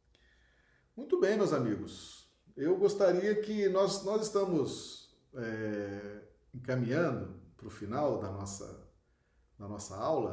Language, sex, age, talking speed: Portuguese, male, 40-59, 115 wpm